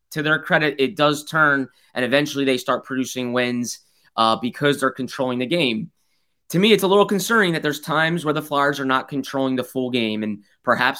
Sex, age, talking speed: male, 20-39, 205 wpm